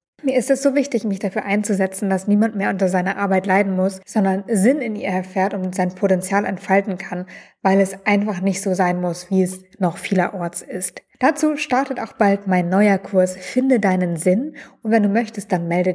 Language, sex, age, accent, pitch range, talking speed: German, female, 20-39, German, 185-230 Hz, 205 wpm